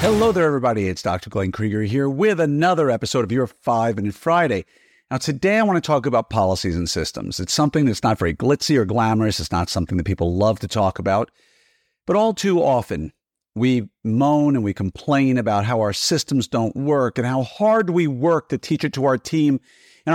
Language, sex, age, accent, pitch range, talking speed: English, male, 50-69, American, 100-160 Hz, 210 wpm